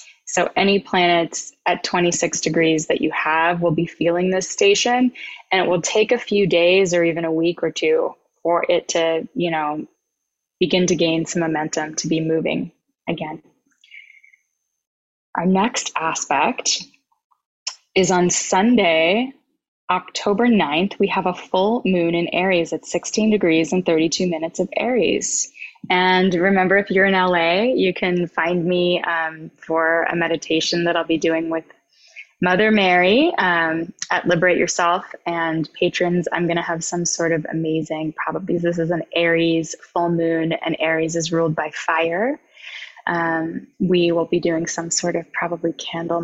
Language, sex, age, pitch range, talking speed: English, female, 20-39, 165-190 Hz, 160 wpm